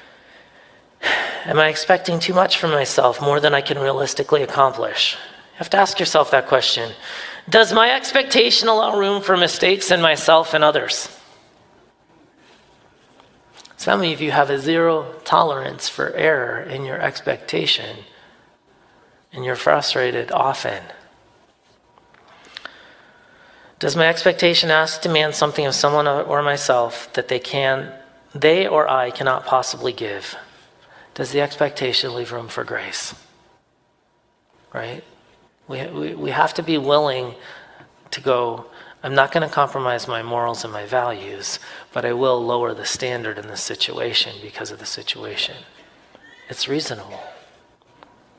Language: English